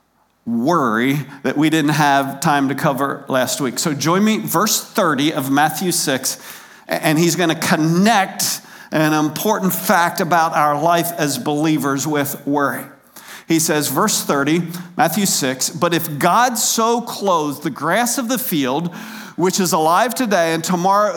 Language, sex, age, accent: English, male, 50-69, American